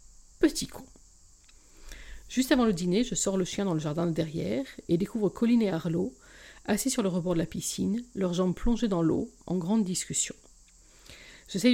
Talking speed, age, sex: 185 wpm, 50-69, female